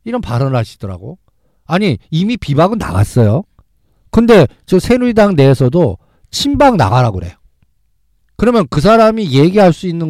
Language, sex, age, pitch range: Korean, male, 50-69, 120-180 Hz